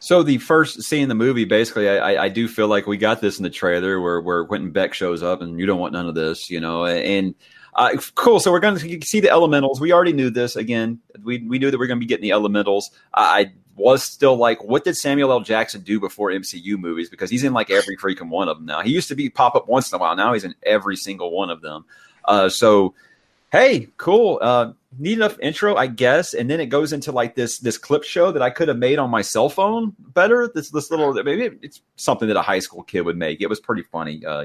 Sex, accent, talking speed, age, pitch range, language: male, American, 260 wpm, 30-49, 95-150 Hz, English